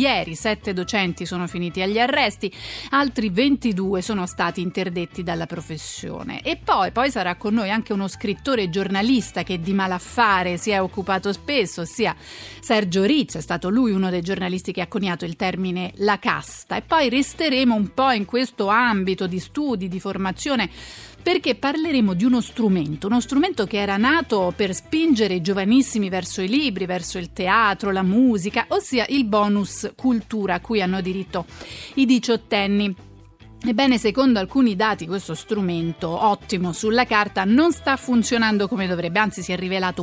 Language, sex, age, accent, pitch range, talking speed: Italian, female, 30-49, native, 185-240 Hz, 165 wpm